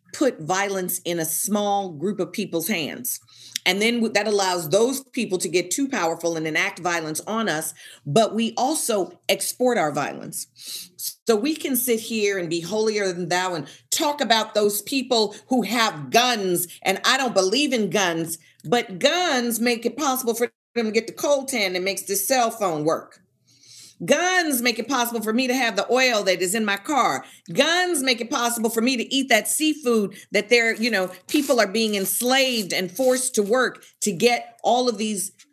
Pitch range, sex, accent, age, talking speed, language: 185-245 Hz, female, American, 40-59, 195 wpm, English